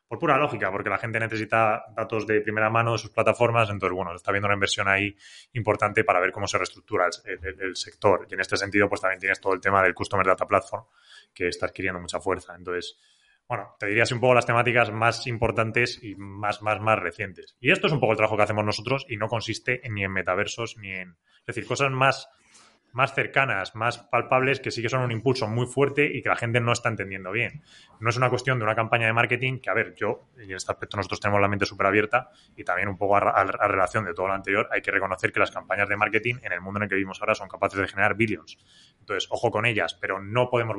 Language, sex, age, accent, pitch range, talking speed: Spanish, male, 20-39, Spanish, 100-120 Hz, 250 wpm